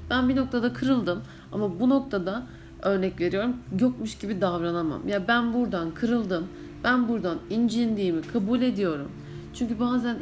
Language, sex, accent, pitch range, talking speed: Turkish, female, native, 175-240 Hz, 135 wpm